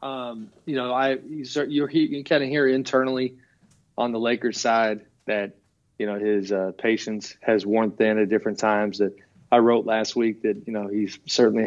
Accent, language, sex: American, English, male